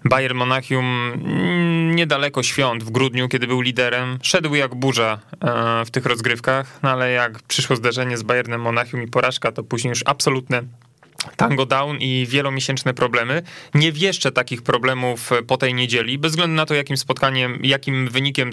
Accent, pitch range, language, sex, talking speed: native, 120-140 Hz, Polish, male, 150 wpm